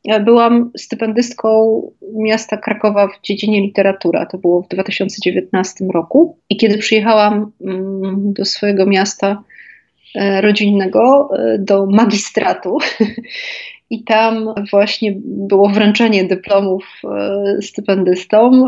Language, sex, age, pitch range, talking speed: Polish, female, 30-49, 195-235 Hz, 90 wpm